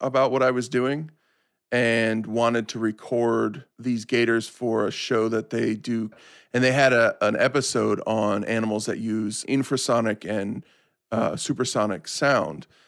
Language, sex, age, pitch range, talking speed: English, male, 40-59, 110-130 Hz, 145 wpm